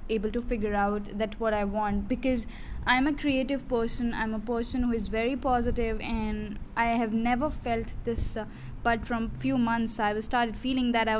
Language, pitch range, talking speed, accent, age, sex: English, 215-245 Hz, 200 wpm, Indian, 10-29, female